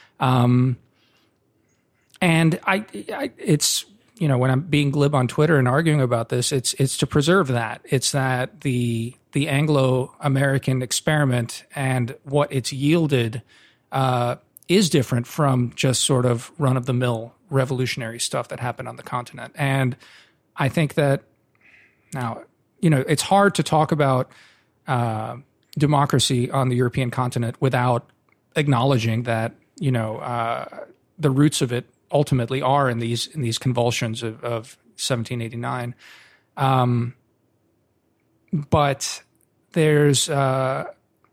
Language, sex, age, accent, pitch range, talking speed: English, male, 40-59, American, 120-145 Hz, 135 wpm